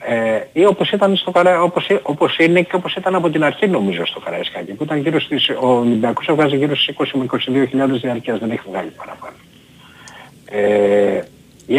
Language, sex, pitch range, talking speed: Greek, male, 120-160 Hz, 175 wpm